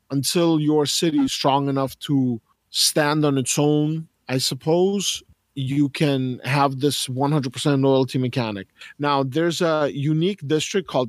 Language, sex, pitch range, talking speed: English, male, 135-175 Hz, 155 wpm